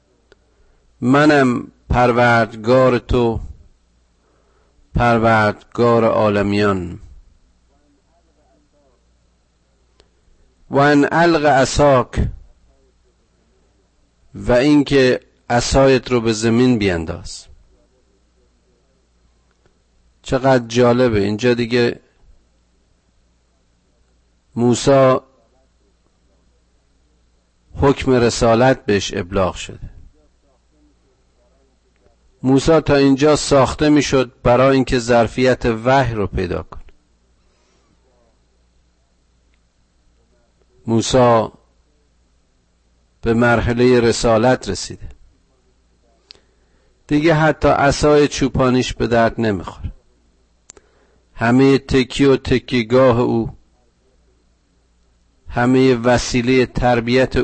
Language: Persian